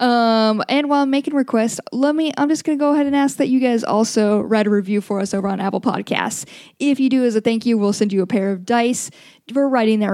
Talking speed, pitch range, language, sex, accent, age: 270 wpm, 210-250 Hz, English, female, American, 10-29